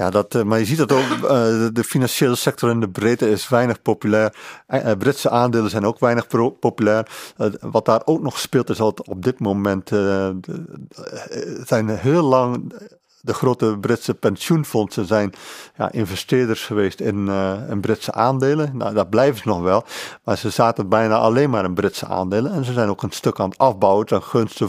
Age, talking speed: 50-69, 195 wpm